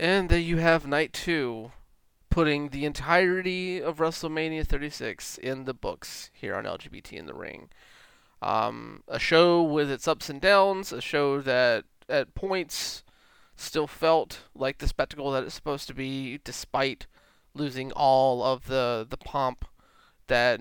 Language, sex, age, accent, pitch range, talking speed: English, male, 20-39, American, 125-160 Hz, 150 wpm